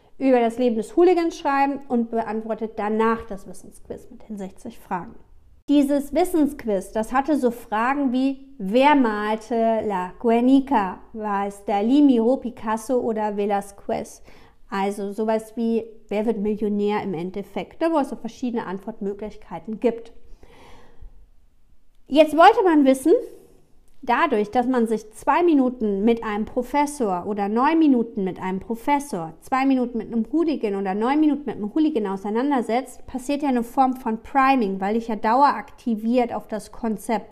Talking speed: 150 wpm